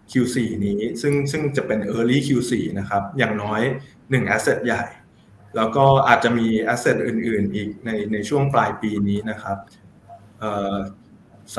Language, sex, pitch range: Thai, male, 105-125 Hz